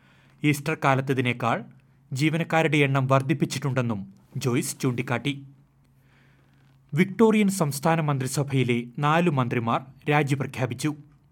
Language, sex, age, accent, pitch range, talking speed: Malayalam, male, 30-49, native, 130-145 Hz, 70 wpm